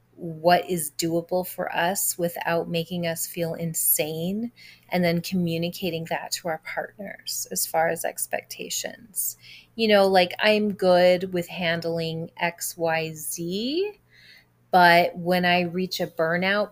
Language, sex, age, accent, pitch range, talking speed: English, female, 30-49, American, 165-185 Hz, 135 wpm